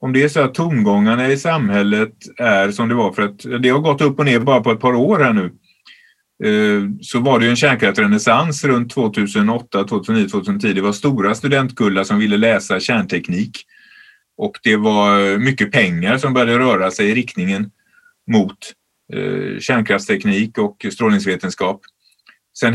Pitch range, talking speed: 110-170 Hz, 160 wpm